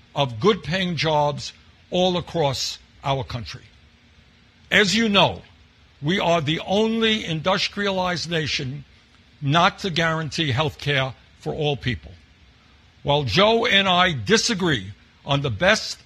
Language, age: English, 60-79